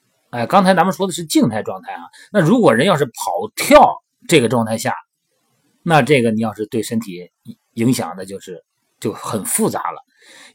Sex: male